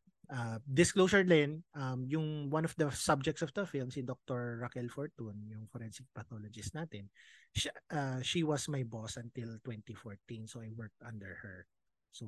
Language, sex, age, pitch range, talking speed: English, male, 20-39, 120-170 Hz, 165 wpm